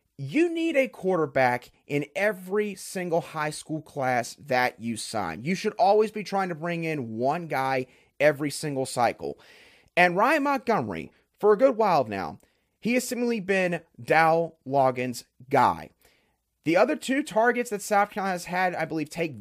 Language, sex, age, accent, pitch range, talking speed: English, male, 30-49, American, 145-205 Hz, 165 wpm